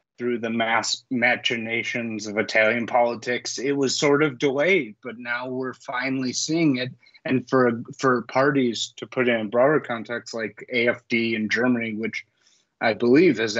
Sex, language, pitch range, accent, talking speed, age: male, English, 115-135 Hz, American, 160 wpm, 30-49